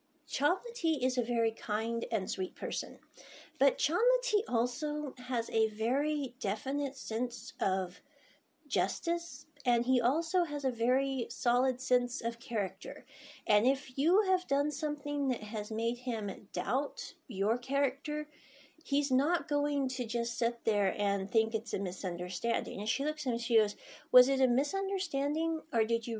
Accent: American